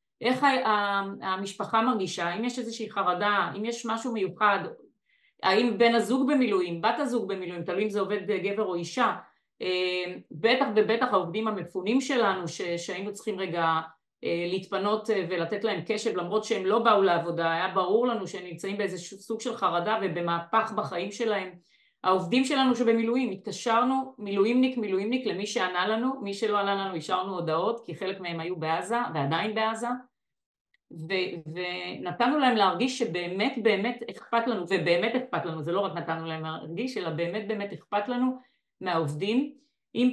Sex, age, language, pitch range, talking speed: female, 30-49, Hebrew, 180-230 Hz, 155 wpm